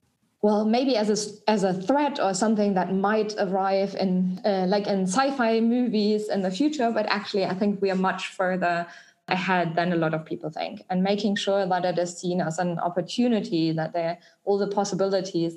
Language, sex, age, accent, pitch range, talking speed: English, female, 20-39, German, 165-190 Hz, 195 wpm